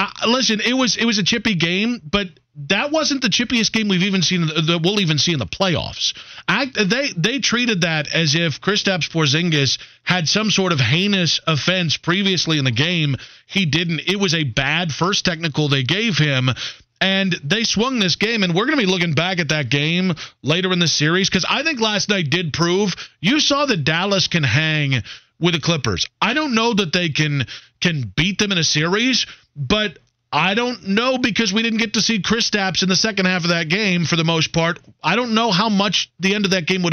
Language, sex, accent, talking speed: English, male, American, 220 wpm